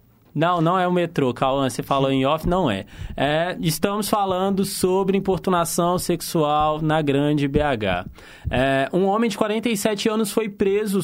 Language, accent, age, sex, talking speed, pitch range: Portuguese, Brazilian, 20-39, male, 150 wpm, 165-215 Hz